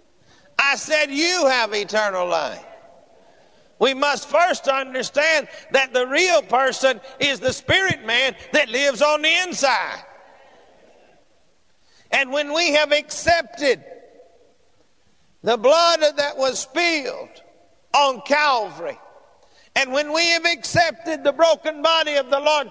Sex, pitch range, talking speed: male, 275-315 Hz, 120 wpm